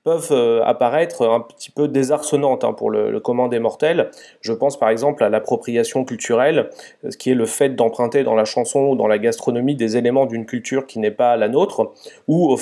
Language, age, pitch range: French, 30-49, 120-145 Hz